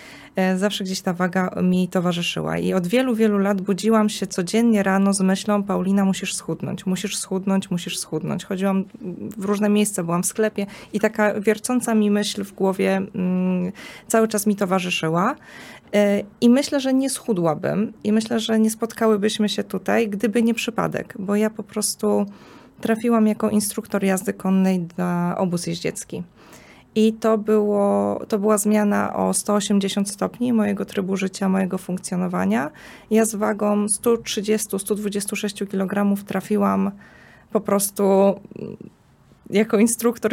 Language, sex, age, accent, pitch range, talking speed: Polish, female, 20-39, native, 190-215 Hz, 140 wpm